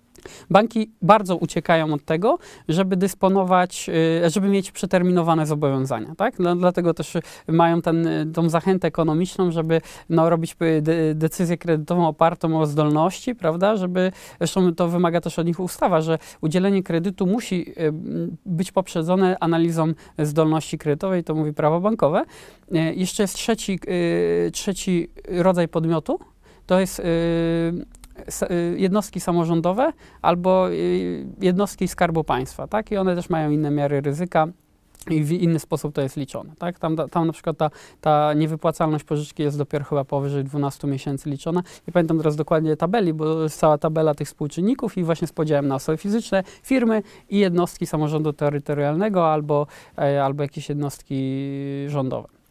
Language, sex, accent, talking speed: Polish, male, native, 140 wpm